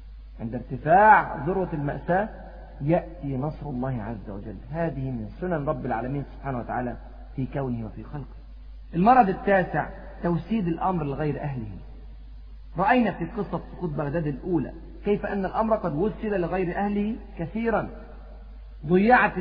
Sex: male